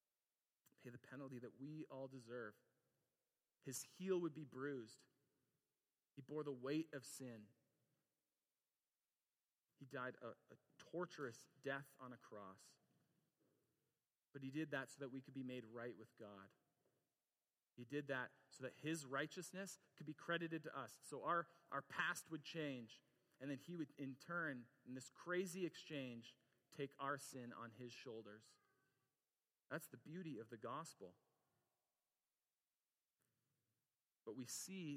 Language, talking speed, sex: English, 140 wpm, male